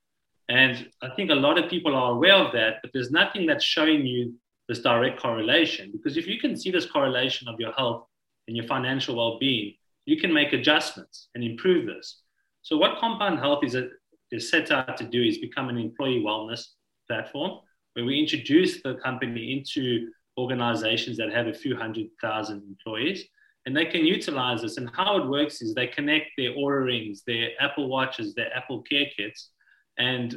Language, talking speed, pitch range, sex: English, 190 wpm, 120-160 Hz, male